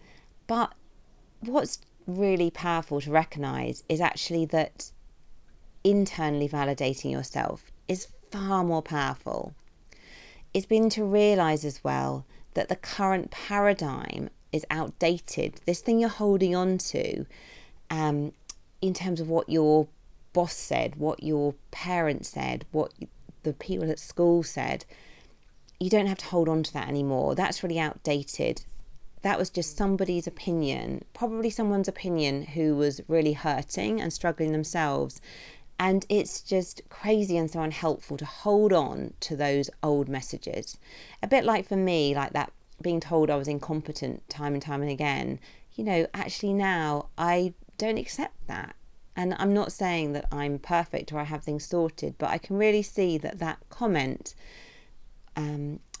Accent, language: British, English